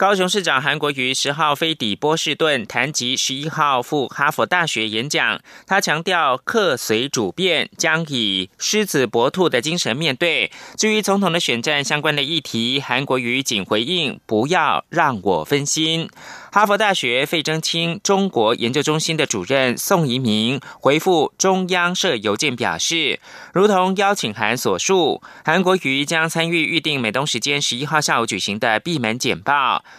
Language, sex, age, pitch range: German, male, 30-49, 130-170 Hz